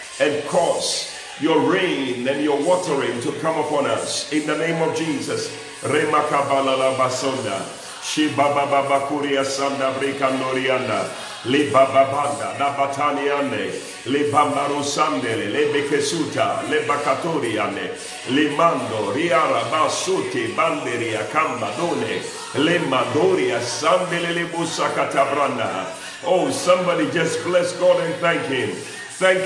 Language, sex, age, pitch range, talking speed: English, male, 50-69, 145-185 Hz, 50 wpm